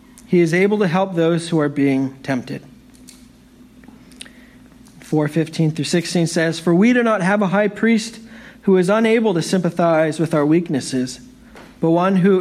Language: English